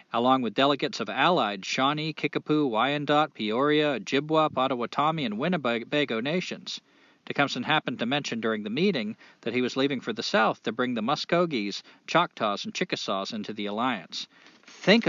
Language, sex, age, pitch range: English, male, 40-59, 140-215 Hz